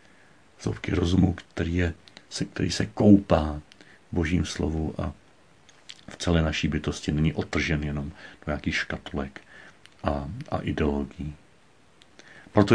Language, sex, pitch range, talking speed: Czech, male, 80-95 Hz, 115 wpm